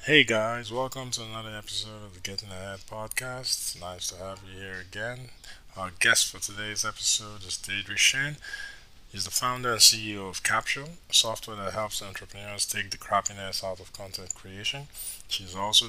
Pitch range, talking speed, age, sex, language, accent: 95-110 Hz, 175 wpm, 20-39, male, English, American